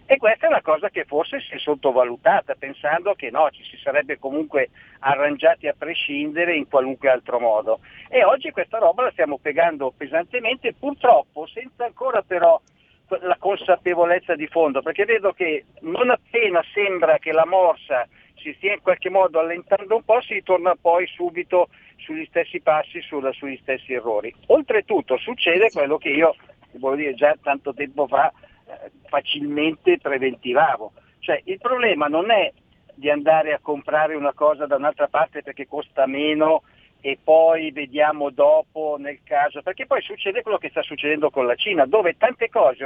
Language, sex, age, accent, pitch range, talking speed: Italian, male, 50-69, native, 150-240 Hz, 160 wpm